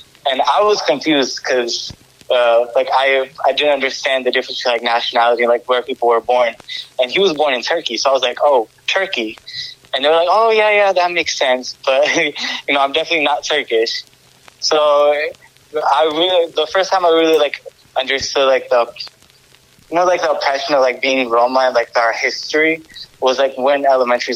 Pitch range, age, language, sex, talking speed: 120-155 Hz, 20-39, English, male, 195 wpm